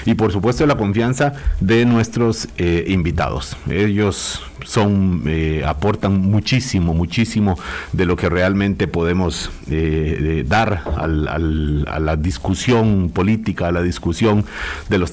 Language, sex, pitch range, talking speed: Spanish, male, 80-105 Hz, 130 wpm